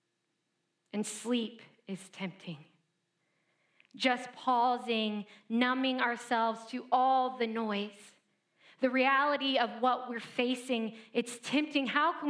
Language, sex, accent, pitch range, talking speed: English, female, American, 215-265 Hz, 105 wpm